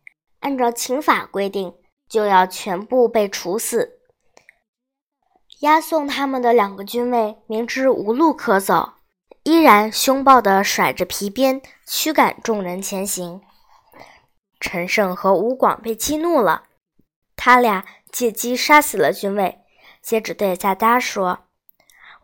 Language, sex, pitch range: Chinese, male, 205-280 Hz